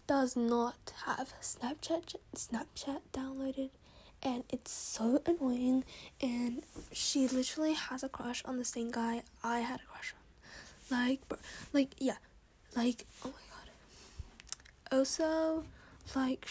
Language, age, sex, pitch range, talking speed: English, 10-29, female, 235-275 Hz, 125 wpm